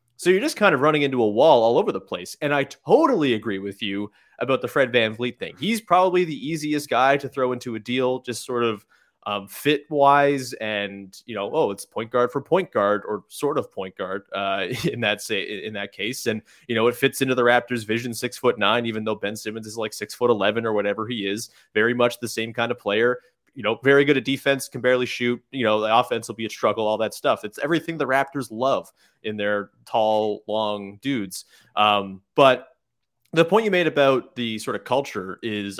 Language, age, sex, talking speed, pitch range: English, 20-39, male, 230 wpm, 110-150 Hz